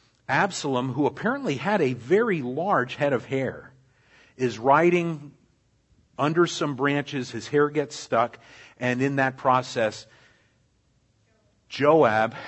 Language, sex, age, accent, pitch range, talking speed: Italian, male, 50-69, American, 100-125 Hz, 115 wpm